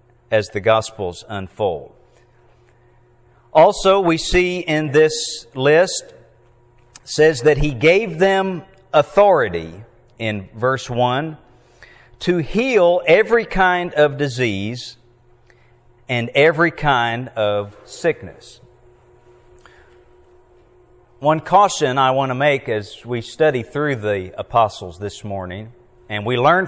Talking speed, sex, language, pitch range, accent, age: 105 wpm, male, English, 115-150 Hz, American, 50-69